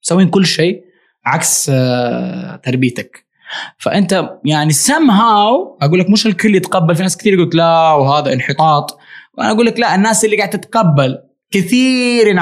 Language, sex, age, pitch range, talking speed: English, male, 20-39, 130-185 Hz, 130 wpm